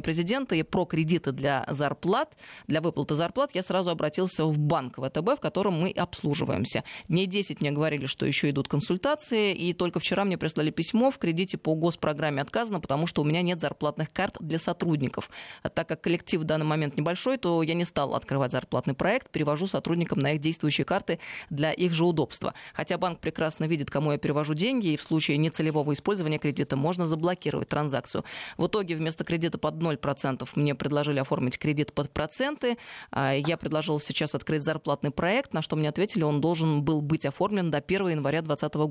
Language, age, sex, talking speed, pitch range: Russian, 20-39, female, 185 wpm, 150-180 Hz